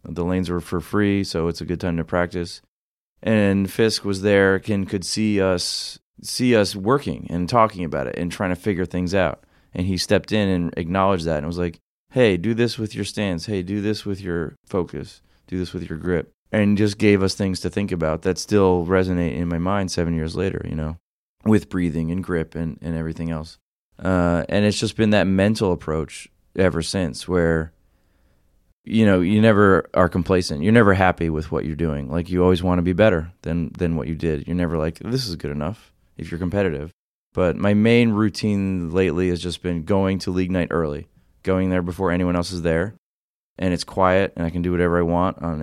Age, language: 20-39, English